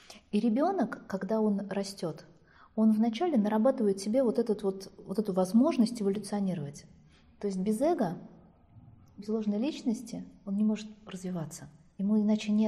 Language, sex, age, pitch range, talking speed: Russian, female, 20-39, 185-225 Hz, 140 wpm